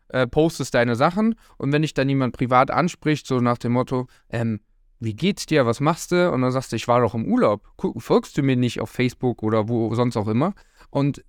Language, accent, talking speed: German, German, 235 wpm